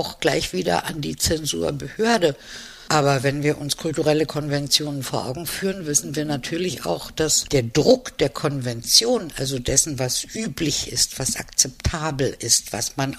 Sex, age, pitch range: female, 60-79, 135-175 Hz